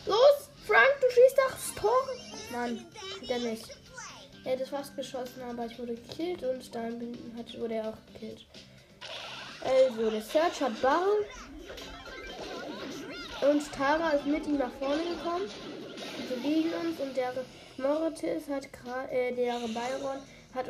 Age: 10-29